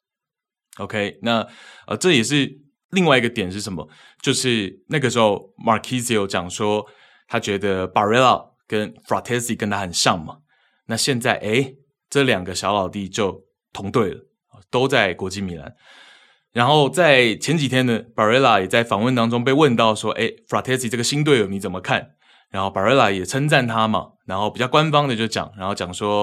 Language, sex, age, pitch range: Chinese, male, 20-39, 100-125 Hz